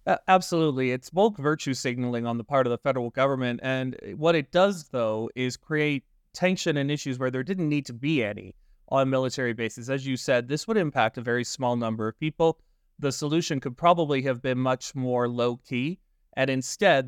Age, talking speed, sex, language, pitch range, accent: 30-49, 195 wpm, male, English, 120-150 Hz, American